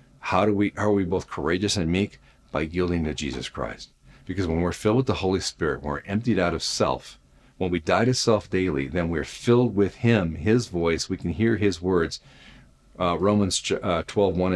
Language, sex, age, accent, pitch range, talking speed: English, male, 40-59, American, 80-105 Hz, 200 wpm